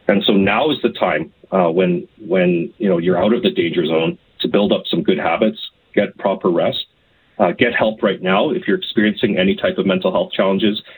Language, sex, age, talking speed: English, male, 30-49, 220 wpm